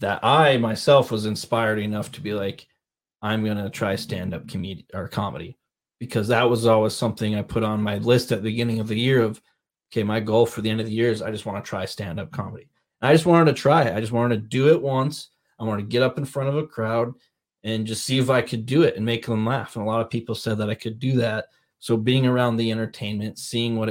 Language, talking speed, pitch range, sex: English, 270 wpm, 110-120 Hz, male